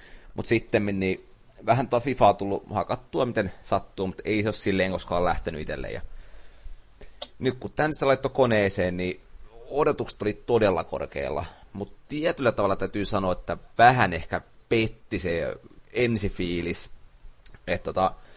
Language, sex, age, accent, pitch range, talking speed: Finnish, male, 30-49, native, 90-110 Hz, 135 wpm